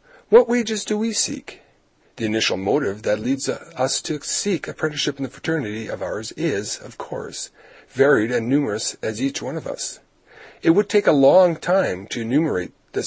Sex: male